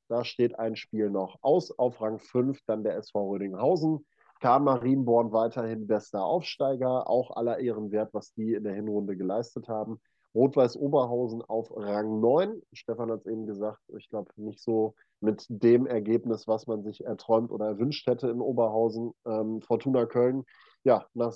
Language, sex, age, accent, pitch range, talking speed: German, male, 20-39, German, 110-125 Hz, 170 wpm